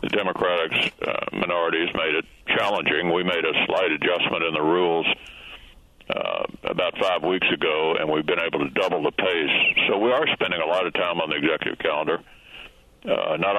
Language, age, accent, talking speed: English, 60-79, American, 185 wpm